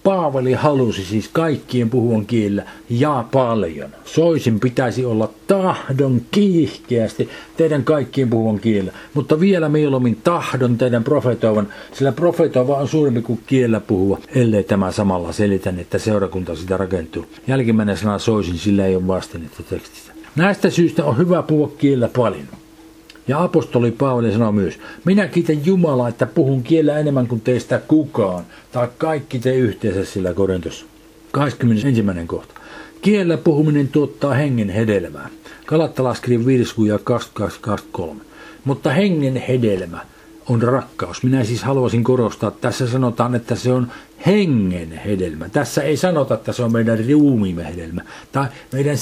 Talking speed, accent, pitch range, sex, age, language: 140 wpm, native, 105-150 Hz, male, 50-69, Finnish